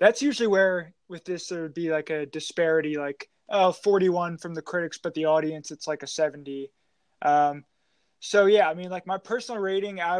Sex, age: male, 20-39